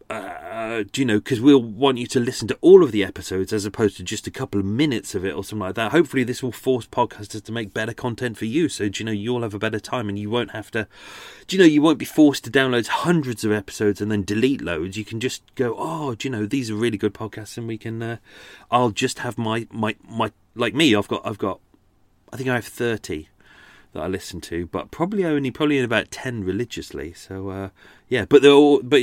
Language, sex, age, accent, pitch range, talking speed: English, male, 30-49, British, 100-130 Hz, 255 wpm